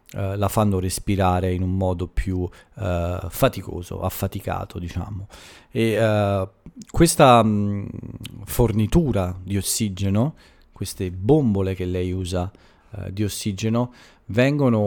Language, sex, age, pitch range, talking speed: Italian, male, 40-59, 95-110 Hz, 115 wpm